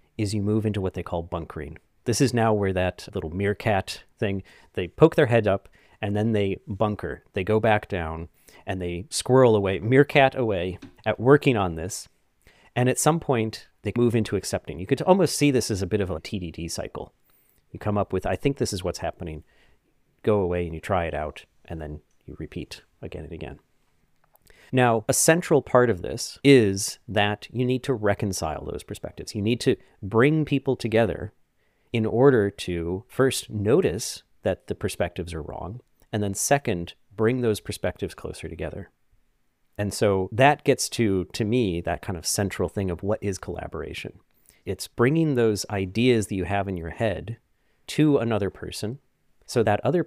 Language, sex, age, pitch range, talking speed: English, male, 40-59, 90-120 Hz, 185 wpm